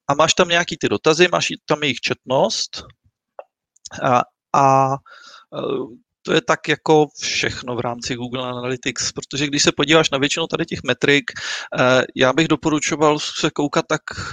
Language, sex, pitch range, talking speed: Czech, male, 125-150 Hz, 150 wpm